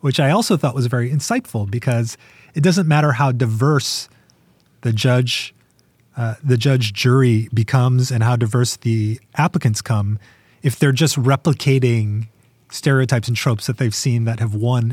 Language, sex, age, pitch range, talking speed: English, male, 30-49, 110-140 Hz, 155 wpm